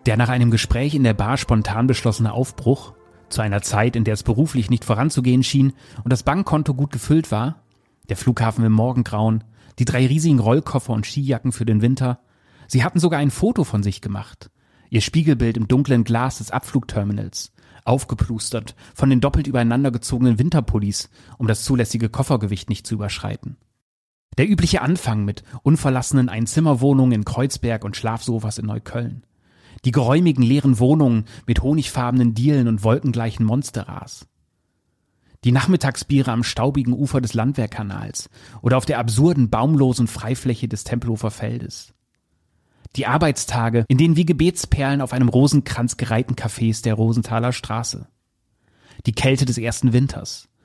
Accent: German